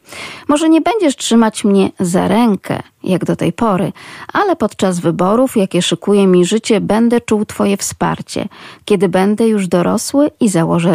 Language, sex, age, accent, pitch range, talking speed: Polish, female, 40-59, native, 185-235 Hz, 155 wpm